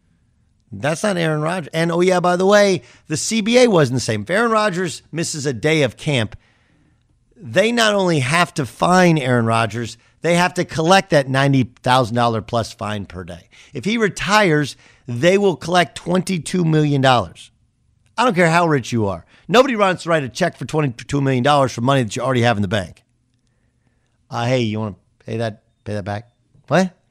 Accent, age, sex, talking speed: American, 50-69, male, 185 wpm